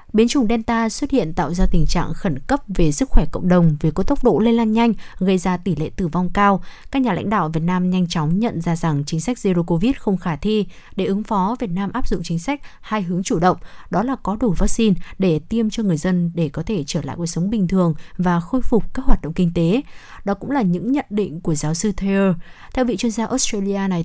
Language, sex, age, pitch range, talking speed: Vietnamese, female, 20-39, 175-225 Hz, 260 wpm